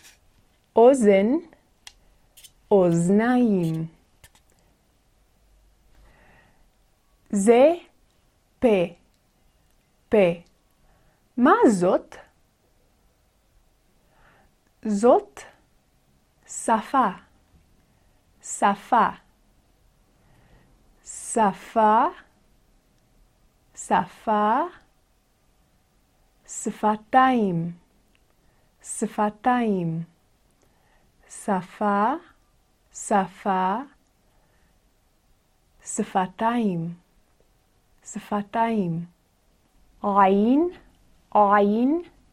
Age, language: 30-49, Hebrew